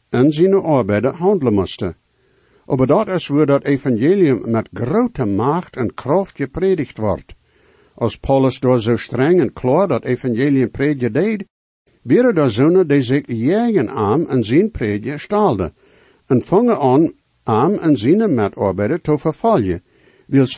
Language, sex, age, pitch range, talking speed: English, male, 60-79, 115-160 Hz, 150 wpm